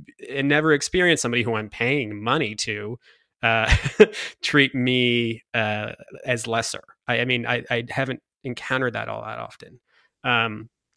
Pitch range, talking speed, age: 110-130 Hz, 150 wpm, 20-39